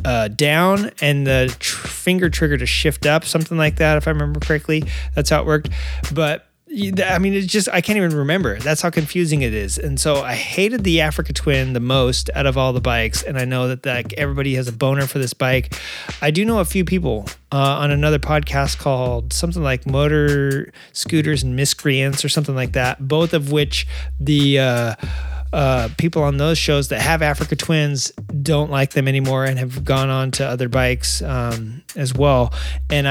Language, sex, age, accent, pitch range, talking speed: English, male, 30-49, American, 125-155 Hz, 200 wpm